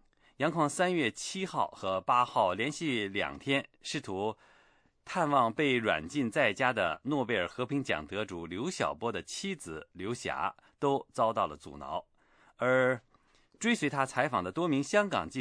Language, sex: English, male